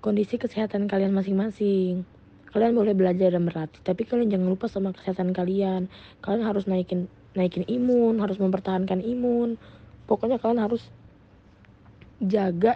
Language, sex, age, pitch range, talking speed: Indonesian, female, 20-39, 180-225 Hz, 130 wpm